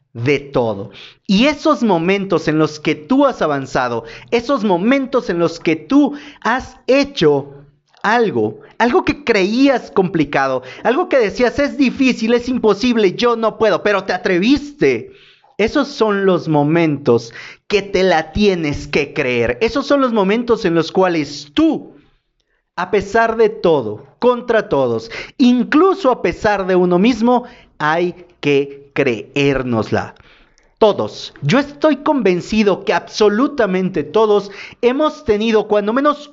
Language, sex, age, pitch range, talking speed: Spanish, male, 40-59, 155-250 Hz, 135 wpm